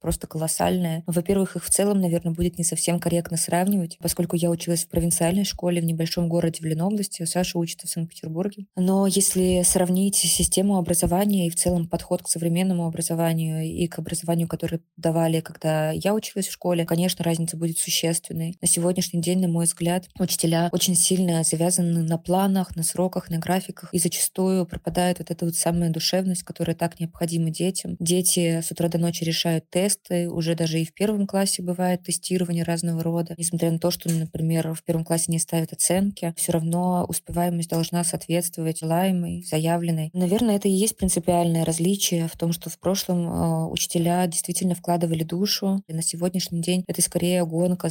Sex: female